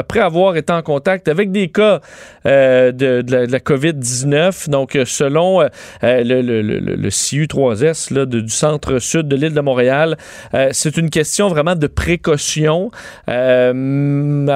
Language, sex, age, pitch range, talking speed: French, male, 40-59, 125-160 Hz, 145 wpm